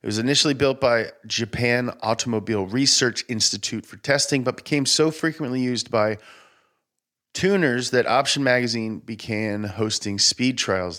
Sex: male